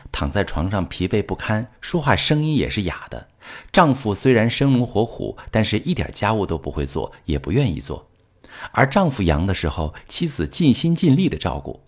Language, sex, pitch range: Chinese, male, 85-130 Hz